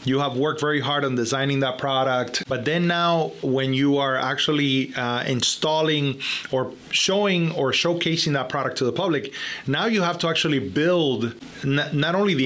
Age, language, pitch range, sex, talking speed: 30-49, English, 130-155 Hz, male, 180 wpm